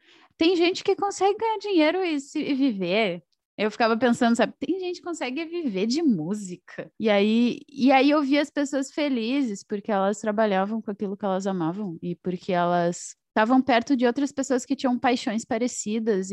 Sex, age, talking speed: female, 20-39, 175 wpm